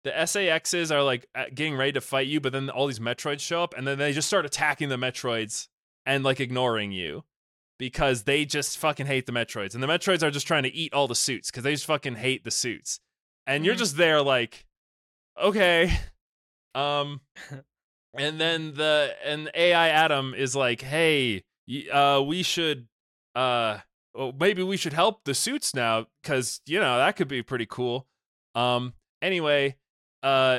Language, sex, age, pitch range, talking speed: English, male, 20-39, 130-160 Hz, 180 wpm